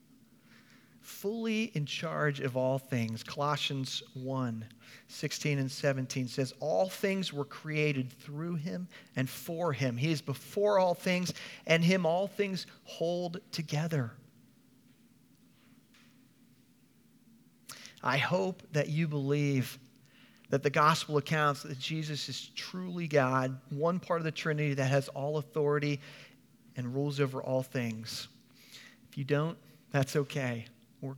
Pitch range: 130-160 Hz